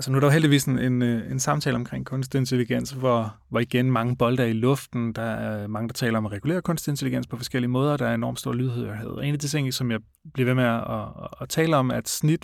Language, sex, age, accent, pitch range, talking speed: Danish, male, 30-49, native, 110-130 Hz, 265 wpm